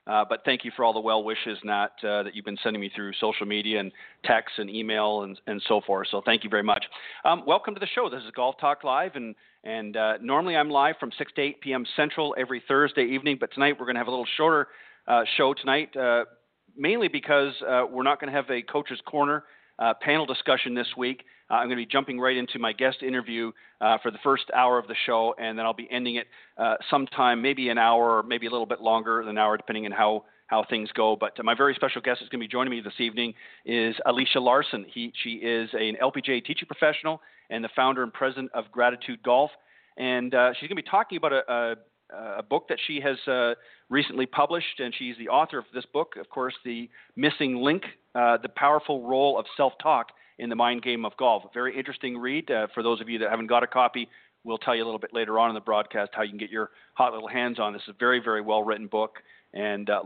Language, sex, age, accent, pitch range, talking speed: English, male, 40-59, American, 110-130 Hz, 250 wpm